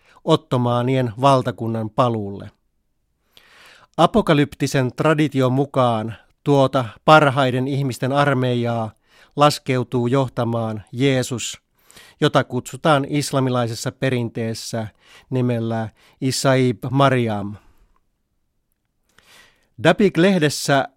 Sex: male